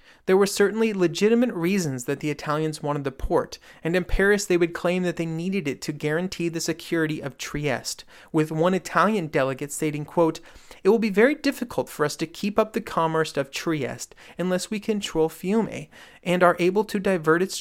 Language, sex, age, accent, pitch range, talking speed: English, male, 30-49, American, 150-195 Hz, 195 wpm